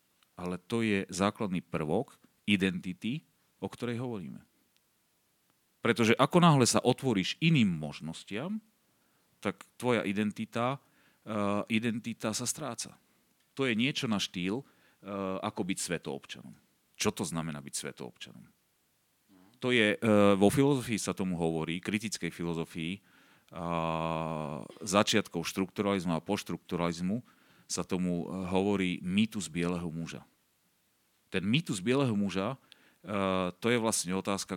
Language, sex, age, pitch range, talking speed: Slovak, male, 40-59, 85-110 Hz, 110 wpm